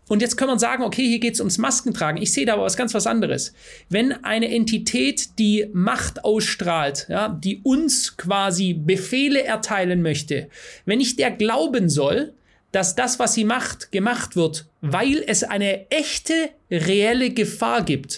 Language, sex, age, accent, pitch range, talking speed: German, male, 30-49, German, 190-245 Hz, 165 wpm